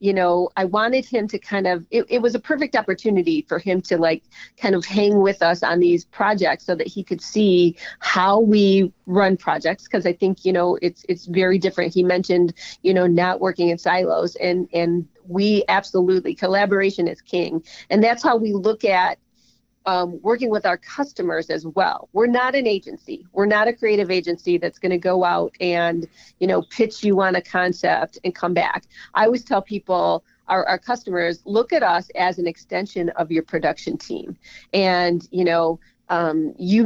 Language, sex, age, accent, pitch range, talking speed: English, female, 40-59, American, 175-205 Hz, 195 wpm